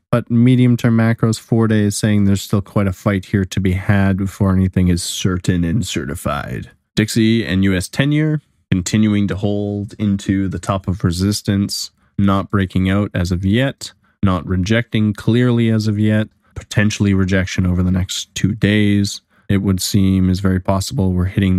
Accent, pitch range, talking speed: American, 95-110 Hz, 170 wpm